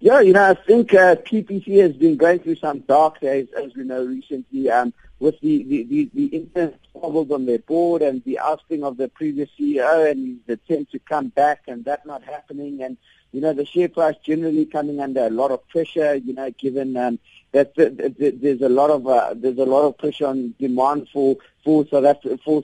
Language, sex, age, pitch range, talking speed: English, male, 50-69, 130-170 Hz, 210 wpm